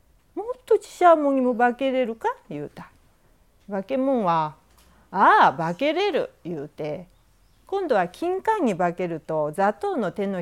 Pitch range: 180-290 Hz